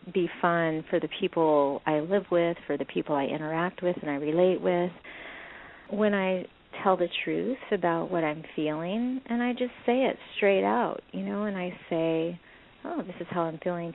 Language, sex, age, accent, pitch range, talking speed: English, female, 40-59, American, 165-205 Hz, 195 wpm